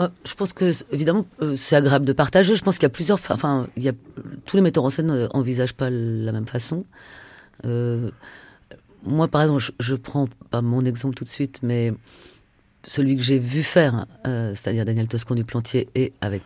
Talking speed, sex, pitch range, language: 200 wpm, female, 115-150 Hz, French